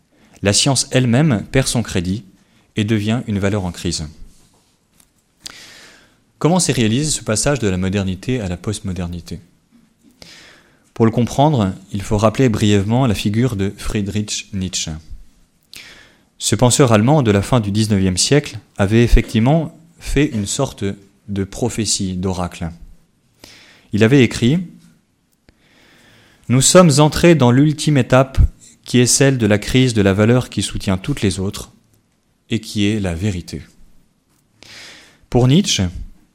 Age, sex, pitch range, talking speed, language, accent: 30-49, male, 100-125 Hz, 135 wpm, French, French